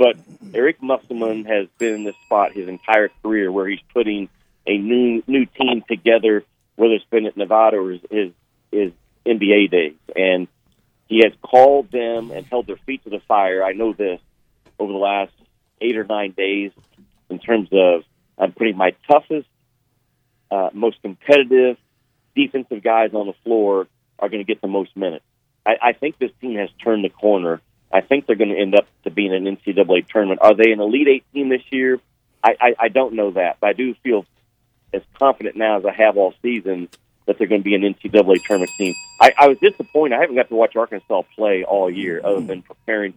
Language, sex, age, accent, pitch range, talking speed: English, male, 40-59, American, 100-125 Hz, 200 wpm